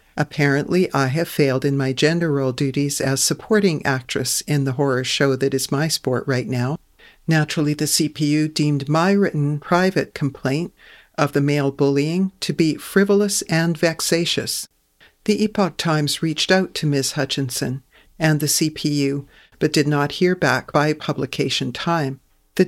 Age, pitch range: 60-79, 140-170 Hz